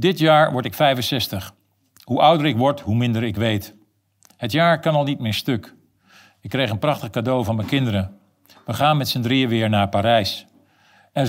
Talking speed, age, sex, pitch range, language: 195 wpm, 50-69, male, 110-140 Hz, Dutch